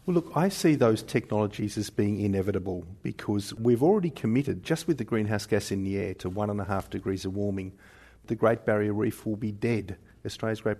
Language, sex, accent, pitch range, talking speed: English, male, Australian, 105-145 Hz, 210 wpm